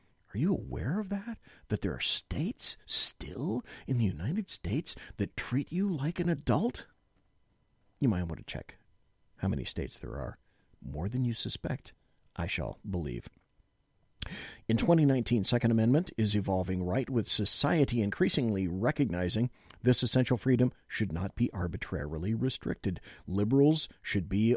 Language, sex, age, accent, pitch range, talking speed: English, male, 50-69, American, 100-140 Hz, 145 wpm